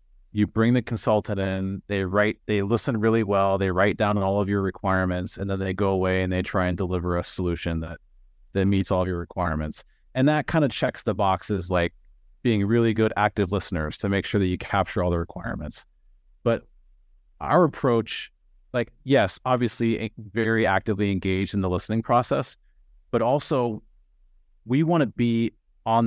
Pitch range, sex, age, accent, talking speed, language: 95-115 Hz, male, 30-49, American, 180 wpm, English